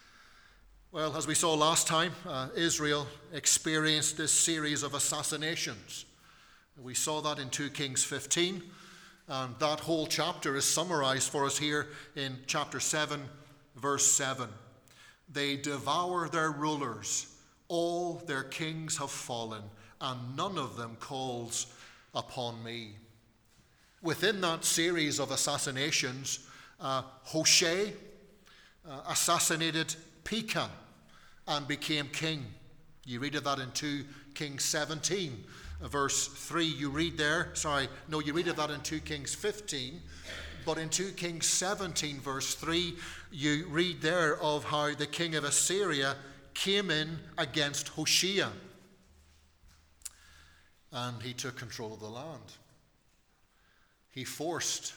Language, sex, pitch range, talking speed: English, male, 130-160 Hz, 125 wpm